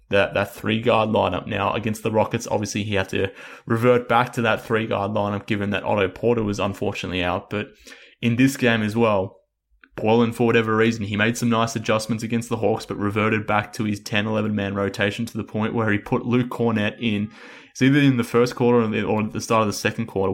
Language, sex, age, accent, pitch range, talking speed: English, male, 20-39, Australian, 100-115 Hz, 225 wpm